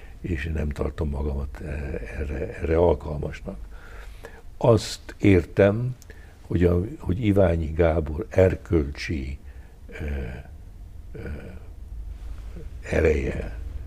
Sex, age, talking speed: male, 60-79, 70 wpm